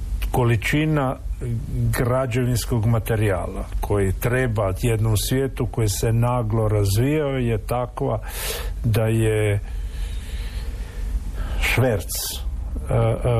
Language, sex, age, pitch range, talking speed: Croatian, male, 50-69, 95-120 Hz, 70 wpm